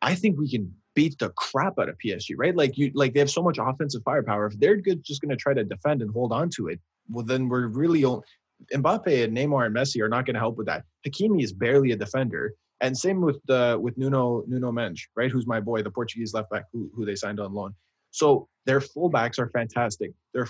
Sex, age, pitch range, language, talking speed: male, 20-39, 110-140 Hz, English, 245 wpm